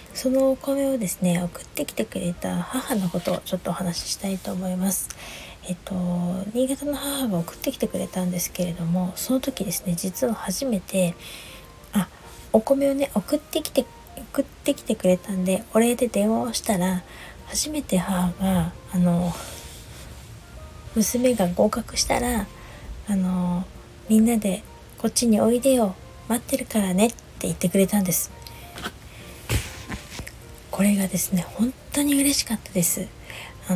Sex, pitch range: female, 180-250 Hz